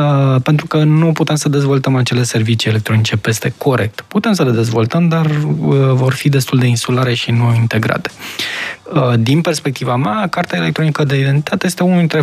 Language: Romanian